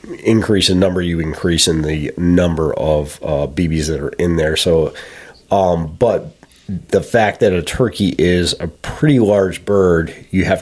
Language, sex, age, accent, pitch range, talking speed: English, male, 30-49, American, 80-95 Hz, 170 wpm